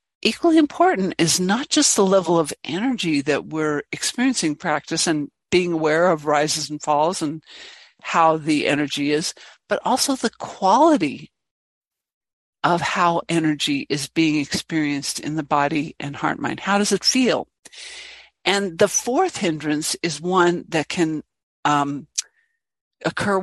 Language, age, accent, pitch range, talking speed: English, 60-79, American, 155-200 Hz, 140 wpm